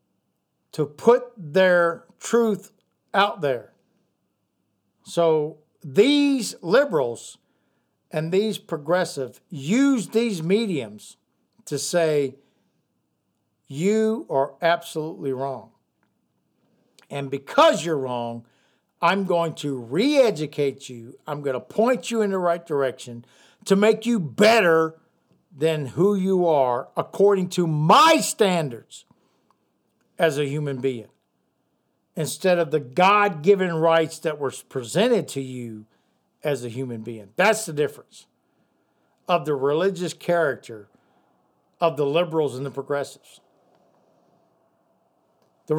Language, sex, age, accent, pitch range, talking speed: English, male, 60-79, American, 140-210 Hz, 110 wpm